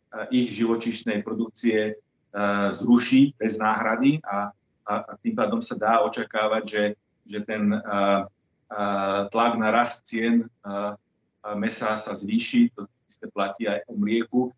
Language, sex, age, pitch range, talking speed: Slovak, male, 40-59, 105-125 Hz, 145 wpm